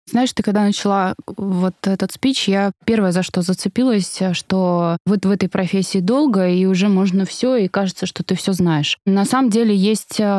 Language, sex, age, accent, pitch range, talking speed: Russian, female, 20-39, native, 175-200 Hz, 185 wpm